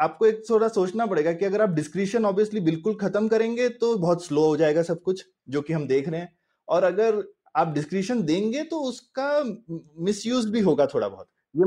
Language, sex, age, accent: Hindi, male, 30-49, native